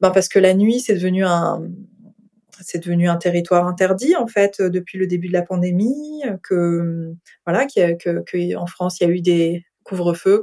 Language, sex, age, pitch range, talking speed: French, female, 20-39, 185-245 Hz, 185 wpm